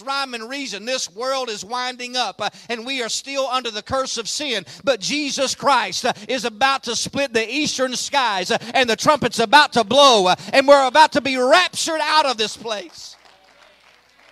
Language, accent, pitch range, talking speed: English, American, 215-275 Hz, 180 wpm